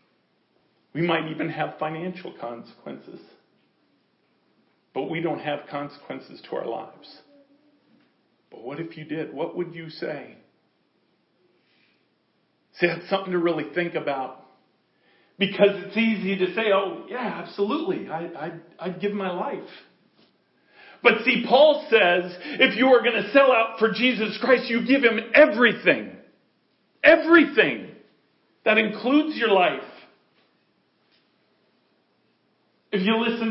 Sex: male